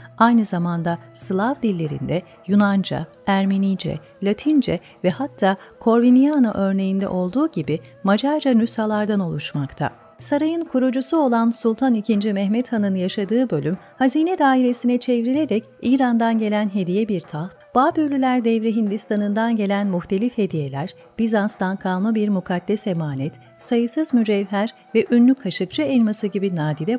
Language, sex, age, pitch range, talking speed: Turkish, female, 40-59, 180-245 Hz, 115 wpm